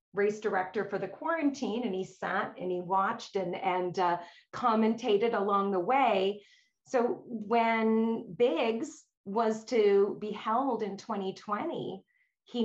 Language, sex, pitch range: English, female, 190-235 Hz